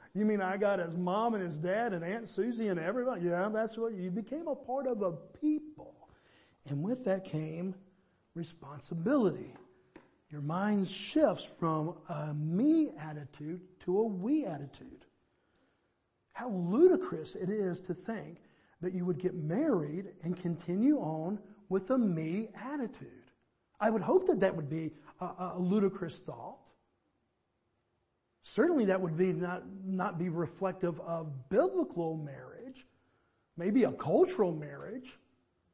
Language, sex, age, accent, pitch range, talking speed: English, male, 50-69, American, 175-235 Hz, 140 wpm